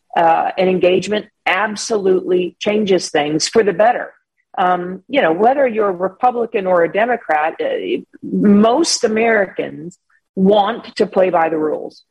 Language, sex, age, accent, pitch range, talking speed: English, female, 40-59, American, 185-235 Hz, 140 wpm